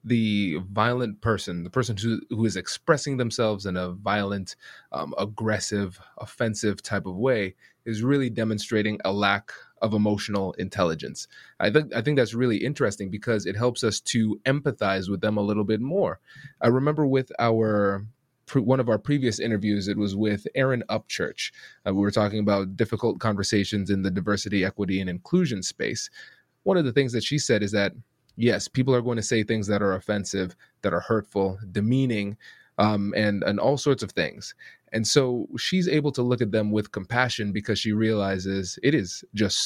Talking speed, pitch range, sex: 185 wpm, 100-130 Hz, male